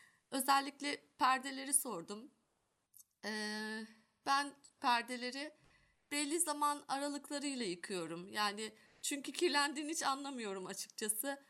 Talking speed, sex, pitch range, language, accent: 85 wpm, female, 215-275 Hz, Turkish, native